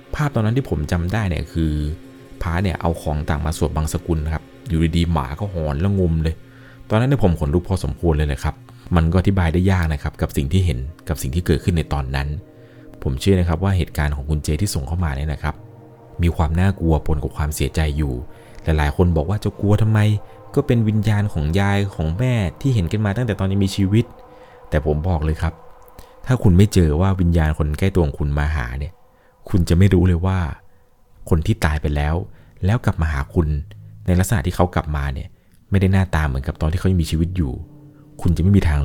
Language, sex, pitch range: Thai, male, 75-95 Hz